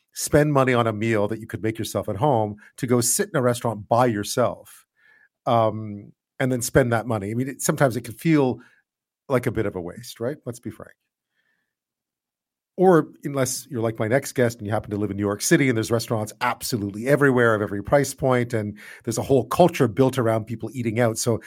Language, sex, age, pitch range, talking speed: English, male, 40-59, 105-130 Hz, 220 wpm